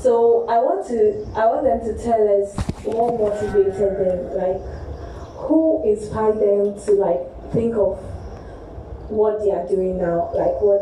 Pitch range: 210-295 Hz